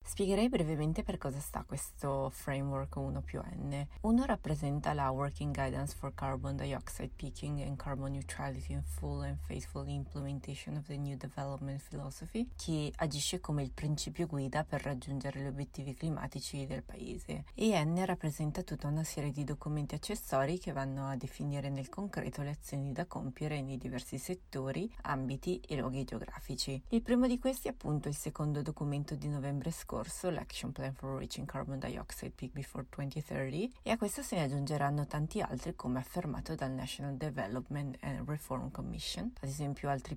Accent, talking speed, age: native, 165 wpm, 30-49